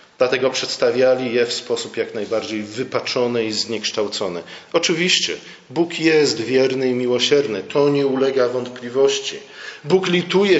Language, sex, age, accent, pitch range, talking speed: Polish, male, 40-59, native, 125-160 Hz, 125 wpm